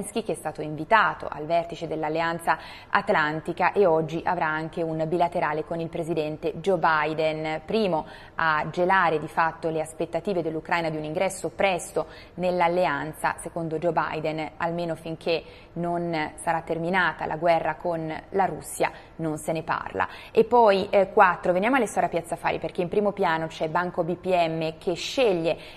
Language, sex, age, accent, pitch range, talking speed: Italian, female, 20-39, native, 160-185 Hz, 160 wpm